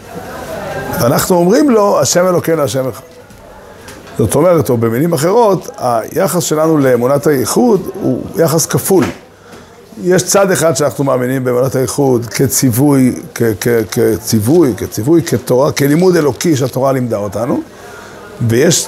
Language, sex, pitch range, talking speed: Hebrew, male, 125-165 Hz, 110 wpm